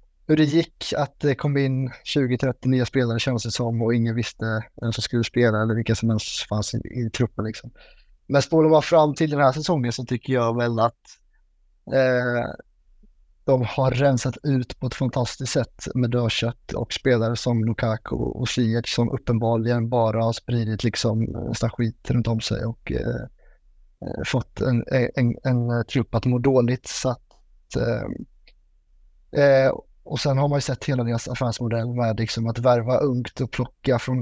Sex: male